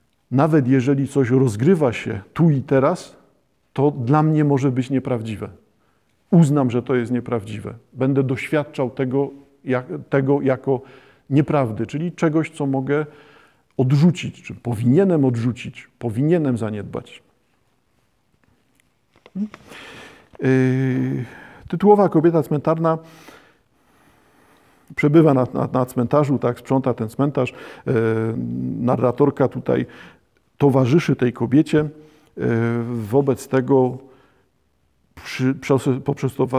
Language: Polish